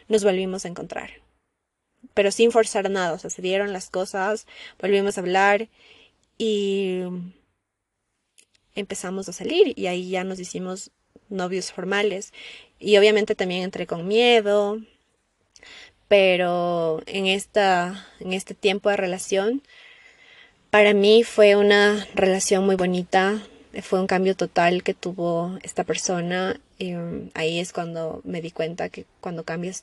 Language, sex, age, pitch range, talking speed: Spanish, female, 20-39, 180-205 Hz, 135 wpm